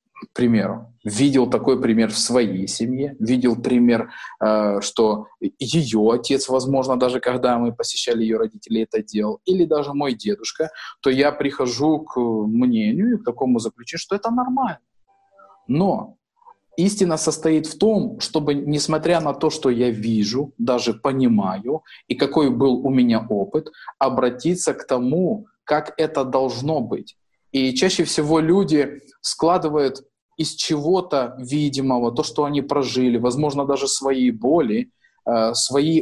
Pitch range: 125-165 Hz